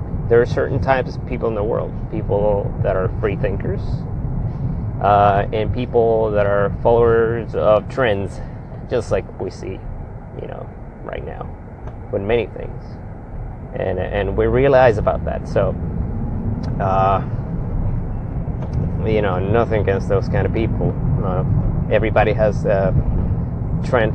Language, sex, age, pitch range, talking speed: English, male, 30-49, 100-125 Hz, 135 wpm